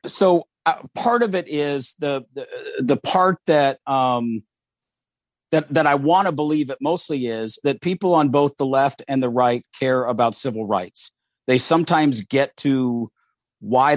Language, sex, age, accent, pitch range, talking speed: English, male, 50-69, American, 120-150 Hz, 170 wpm